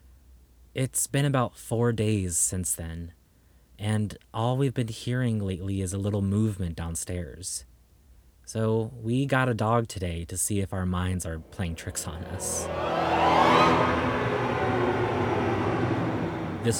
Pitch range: 90-115 Hz